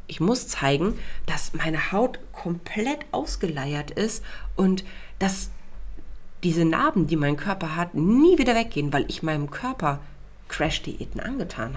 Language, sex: German, female